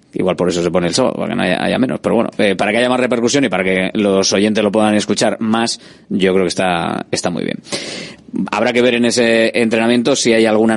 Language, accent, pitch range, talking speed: Spanish, Spanish, 105-120 Hz, 255 wpm